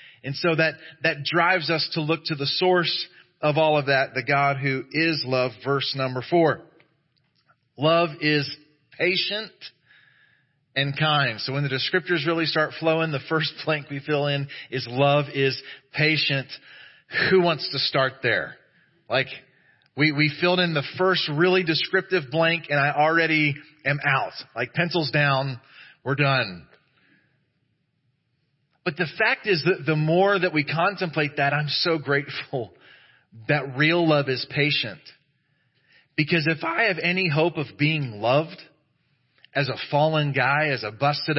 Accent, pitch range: American, 140-165 Hz